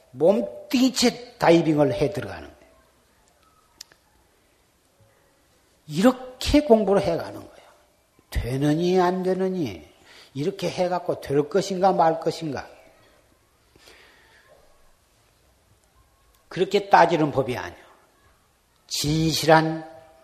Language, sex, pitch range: Korean, male, 150-245 Hz